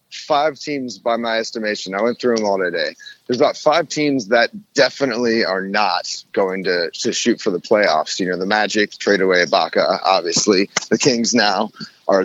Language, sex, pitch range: English, male, 110-150 Hz